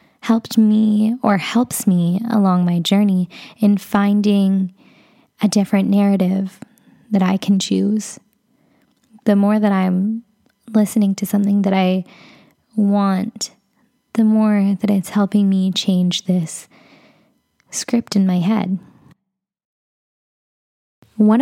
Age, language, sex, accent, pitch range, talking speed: 10-29, English, female, American, 190-220 Hz, 110 wpm